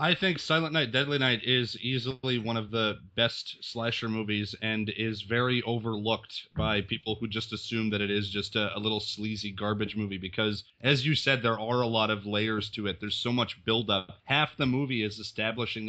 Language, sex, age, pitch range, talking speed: English, male, 30-49, 110-130 Hz, 205 wpm